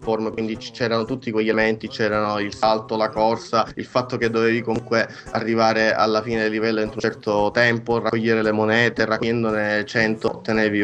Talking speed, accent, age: 170 wpm, native, 20-39